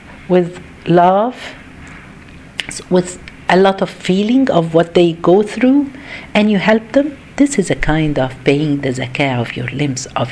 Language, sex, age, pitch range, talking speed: Arabic, female, 50-69, 160-250 Hz, 165 wpm